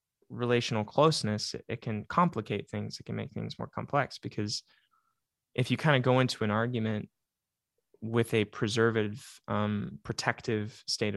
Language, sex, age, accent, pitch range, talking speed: English, male, 20-39, American, 110-125 Hz, 145 wpm